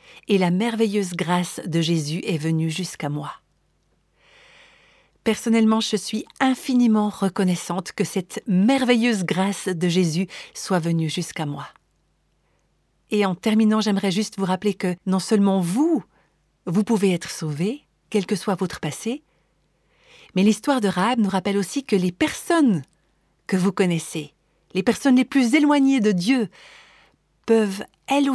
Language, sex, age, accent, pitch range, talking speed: French, female, 50-69, French, 180-225 Hz, 140 wpm